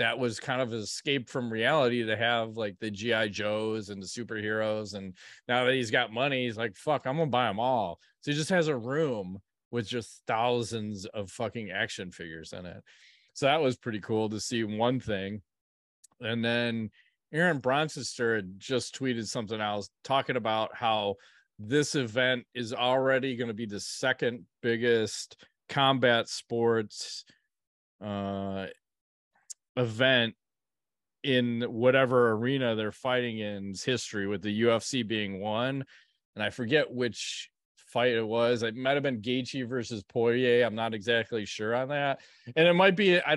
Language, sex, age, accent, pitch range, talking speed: English, male, 30-49, American, 110-135 Hz, 165 wpm